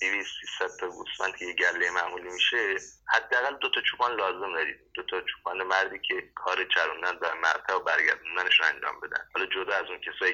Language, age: Persian, 30-49